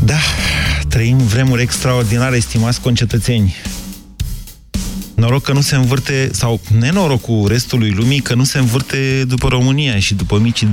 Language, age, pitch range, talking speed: Romanian, 30-49, 105-135 Hz, 135 wpm